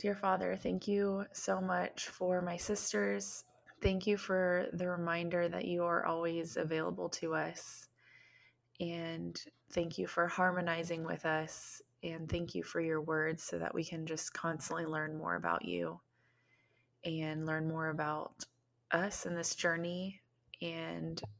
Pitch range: 155-170 Hz